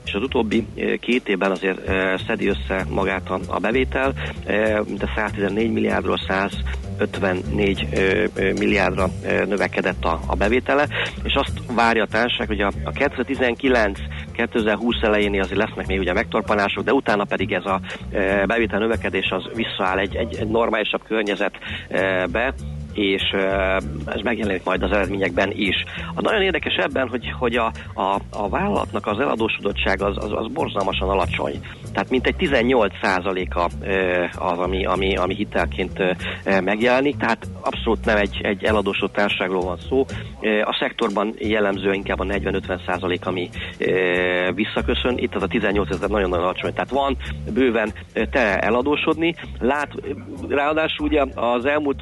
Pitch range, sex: 90-110 Hz, male